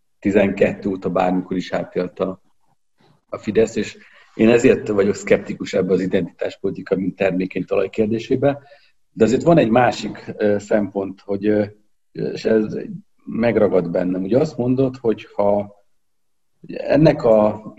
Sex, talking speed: male, 135 wpm